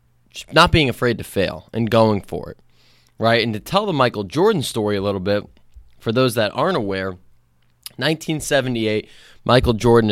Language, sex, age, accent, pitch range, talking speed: English, male, 20-39, American, 95-125 Hz, 165 wpm